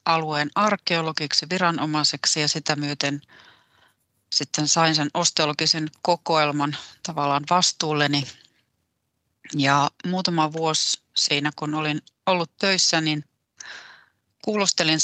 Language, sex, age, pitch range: Finnish, female, 30-49, 145-175 Hz